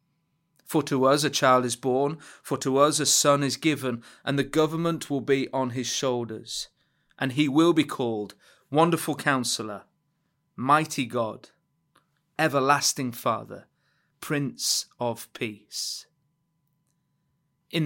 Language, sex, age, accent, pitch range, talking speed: English, male, 30-49, British, 125-150 Hz, 125 wpm